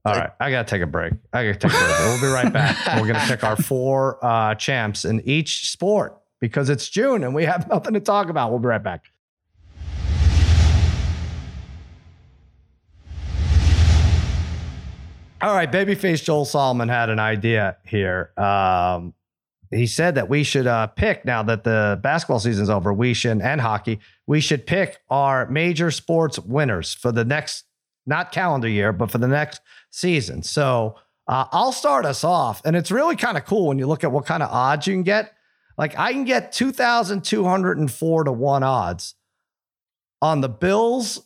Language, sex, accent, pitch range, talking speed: English, male, American, 110-180 Hz, 180 wpm